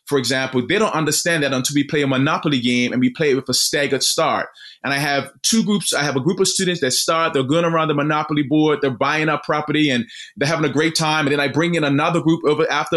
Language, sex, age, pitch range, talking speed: English, male, 20-39, 130-160 Hz, 270 wpm